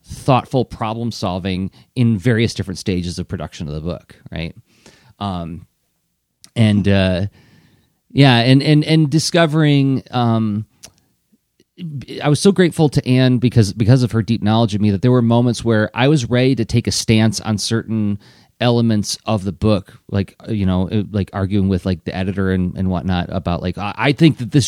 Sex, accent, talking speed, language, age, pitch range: male, American, 175 wpm, English, 30-49, 100-135 Hz